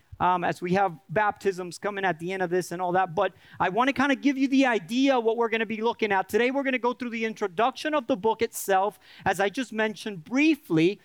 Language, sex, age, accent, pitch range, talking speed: English, male, 40-59, American, 195-275 Hz, 265 wpm